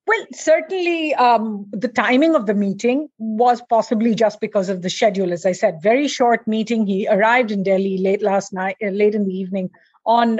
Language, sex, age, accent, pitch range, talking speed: English, female, 50-69, Indian, 210-275 Hz, 190 wpm